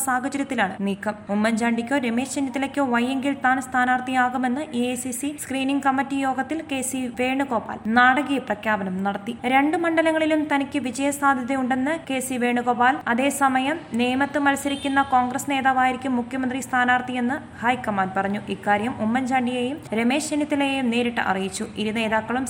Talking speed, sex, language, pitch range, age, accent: 110 wpm, female, Malayalam, 235-275 Hz, 20-39, native